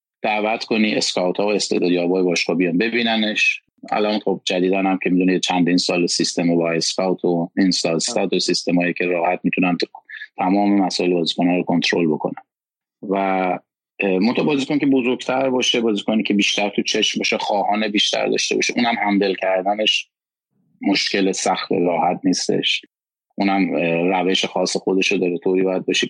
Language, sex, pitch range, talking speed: Persian, male, 90-105 Hz, 160 wpm